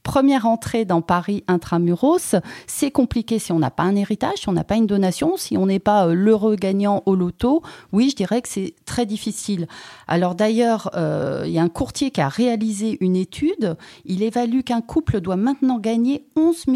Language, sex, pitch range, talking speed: French, female, 180-245 Hz, 200 wpm